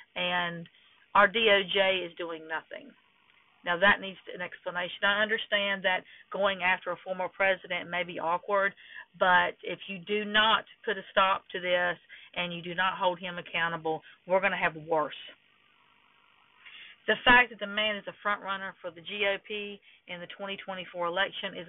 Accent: American